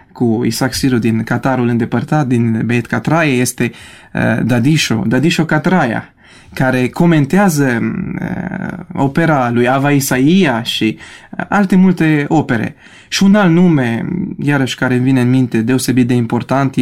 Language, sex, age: Romanian, male, 20-39